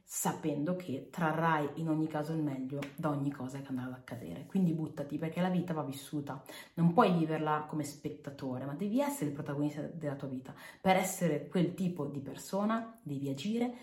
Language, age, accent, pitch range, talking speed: Italian, 30-49, native, 155-200 Hz, 185 wpm